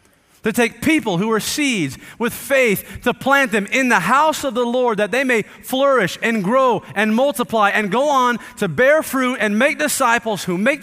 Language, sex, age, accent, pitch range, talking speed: English, male, 30-49, American, 145-195 Hz, 200 wpm